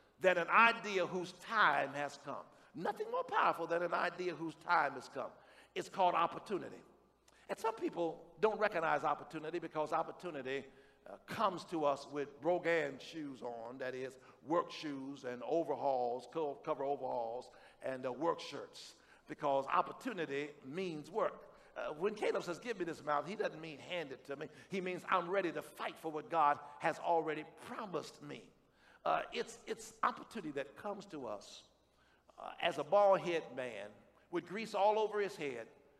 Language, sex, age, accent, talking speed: English, male, 50-69, American, 165 wpm